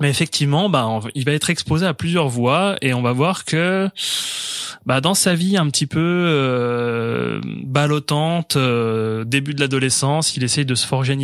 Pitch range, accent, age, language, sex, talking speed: 120-150 Hz, French, 20-39, French, male, 180 wpm